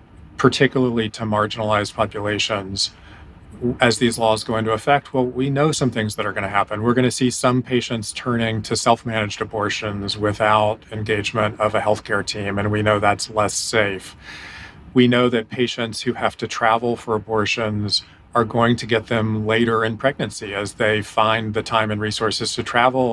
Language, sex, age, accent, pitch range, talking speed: English, male, 40-59, American, 105-120 Hz, 180 wpm